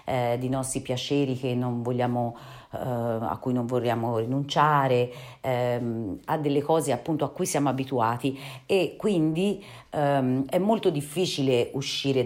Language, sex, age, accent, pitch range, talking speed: Italian, female, 40-59, native, 125-150 Hz, 140 wpm